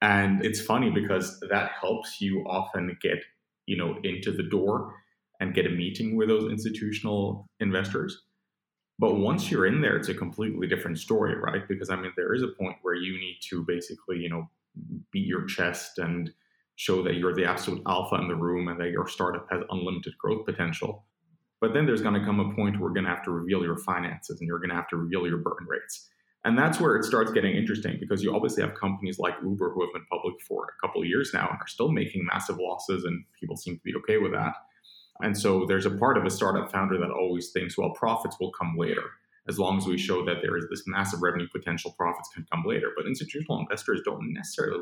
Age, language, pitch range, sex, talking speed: 20-39, English, 85-100 Hz, male, 230 wpm